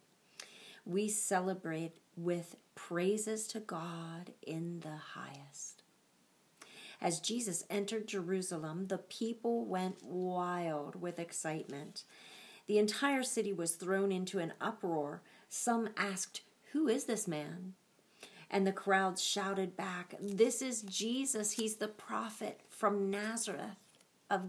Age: 40-59